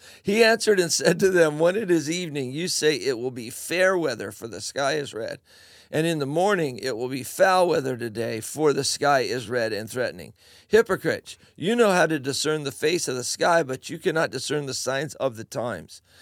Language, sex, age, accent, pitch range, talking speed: English, male, 50-69, American, 140-180 Hz, 220 wpm